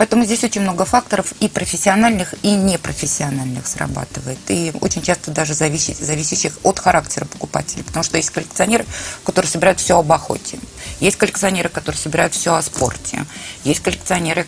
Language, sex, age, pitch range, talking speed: Russian, female, 20-39, 145-180 Hz, 150 wpm